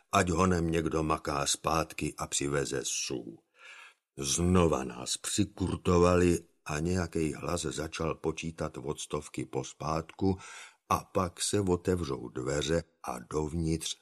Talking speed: 110 wpm